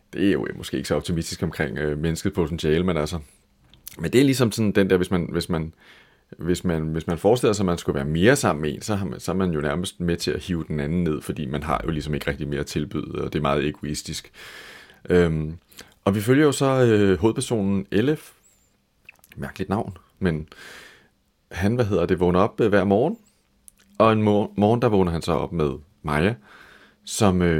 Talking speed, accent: 195 wpm, native